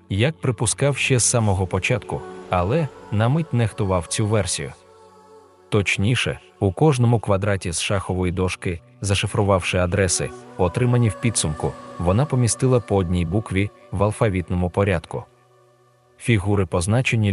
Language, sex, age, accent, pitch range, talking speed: Russian, male, 20-39, native, 90-115 Hz, 115 wpm